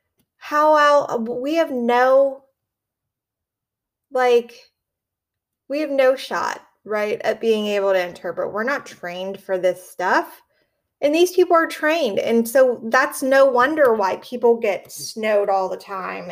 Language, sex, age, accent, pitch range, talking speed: English, female, 20-39, American, 230-295 Hz, 140 wpm